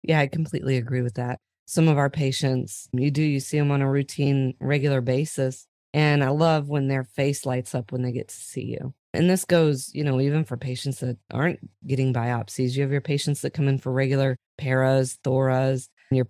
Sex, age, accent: female, 30-49, American